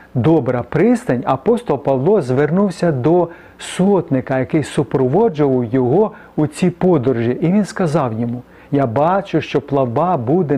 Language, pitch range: Ukrainian, 135-185 Hz